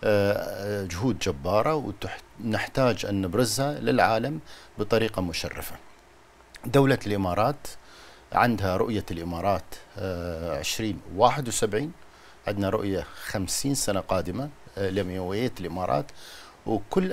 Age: 50-69